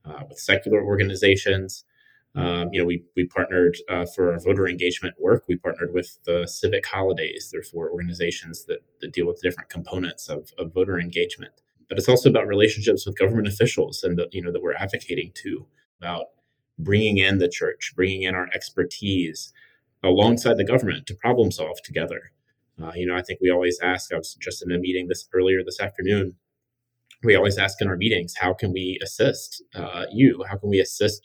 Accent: American